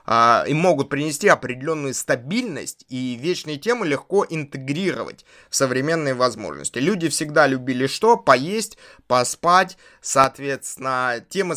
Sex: male